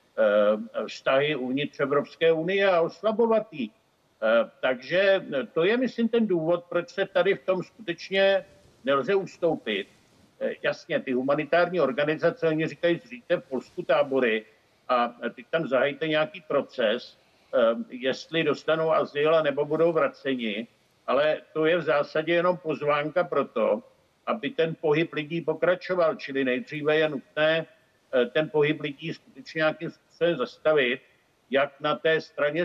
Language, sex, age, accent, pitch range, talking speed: Czech, male, 60-79, native, 145-175 Hz, 135 wpm